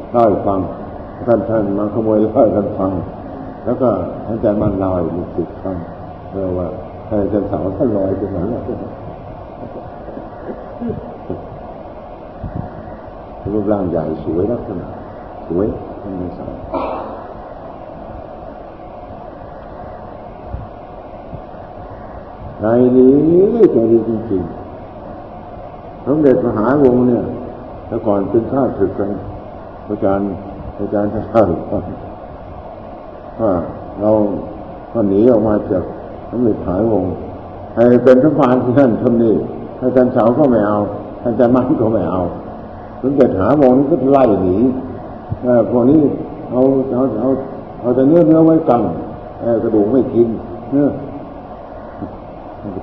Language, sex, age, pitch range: Thai, male, 60-79, 95-120 Hz